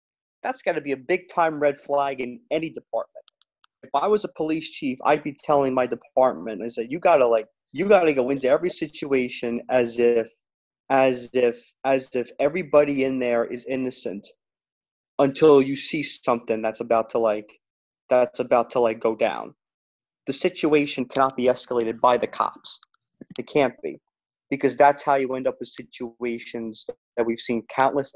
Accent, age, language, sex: American, 30-49, English, male